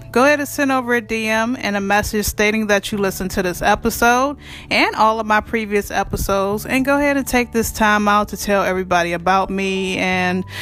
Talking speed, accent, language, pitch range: 210 wpm, American, English, 200-240 Hz